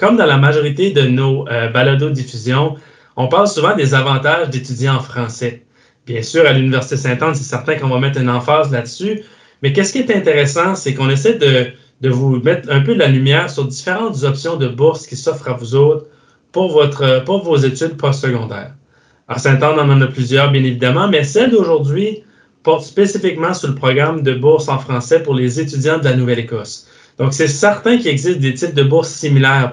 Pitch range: 125-155 Hz